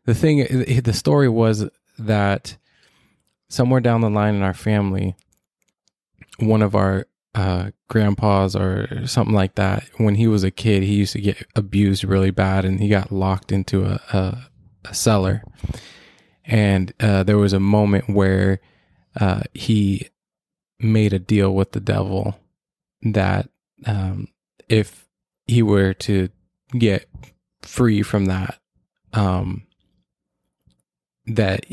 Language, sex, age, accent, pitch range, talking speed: English, male, 20-39, American, 95-110 Hz, 130 wpm